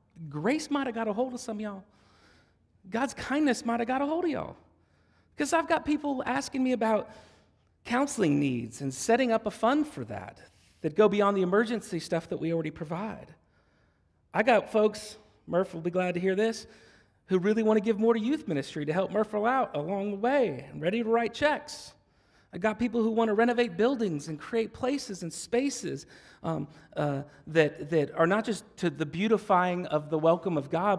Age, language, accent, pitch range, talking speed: 40-59, English, American, 175-245 Hz, 200 wpm